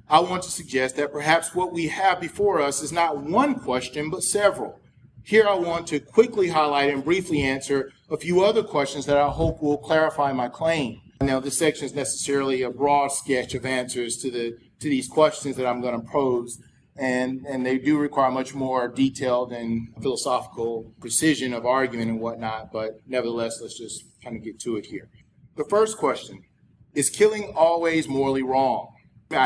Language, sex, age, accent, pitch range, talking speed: English, male, 40-59, American, 130-160 Hz, 185 wpm